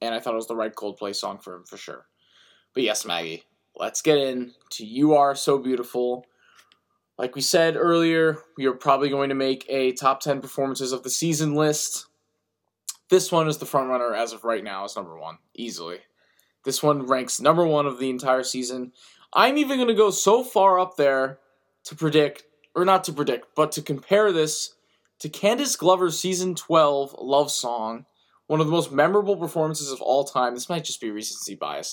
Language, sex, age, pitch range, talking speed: English, male, 20-39, 125-170 Hz, 200 wpm